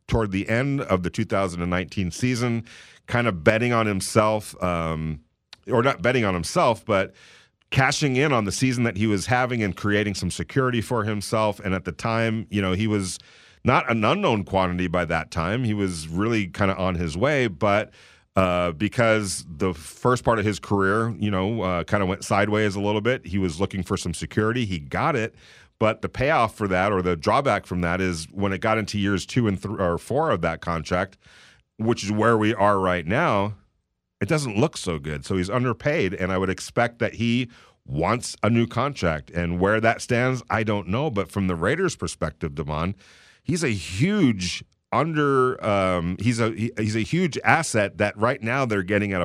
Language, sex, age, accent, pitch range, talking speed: English, male, 40-59, American, 90-115 Hz, 200 wpm